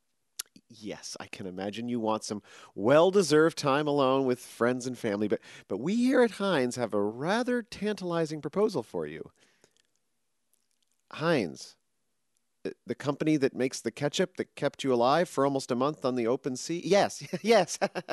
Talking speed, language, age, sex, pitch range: 160 wpm, English, 40-59, male, 120-185 Hz